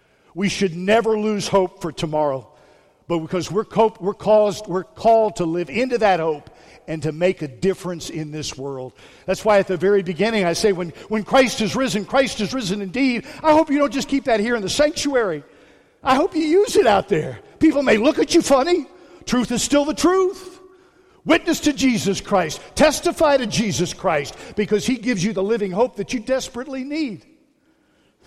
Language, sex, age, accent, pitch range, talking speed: English, male, 50-69, American, 165-230 Hz, 195 wpm